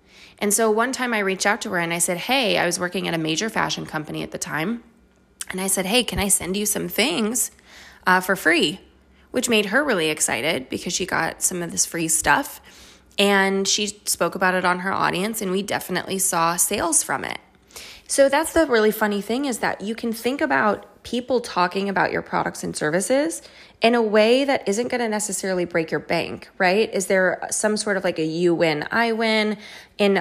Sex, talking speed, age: female, 215 wpm, 20-39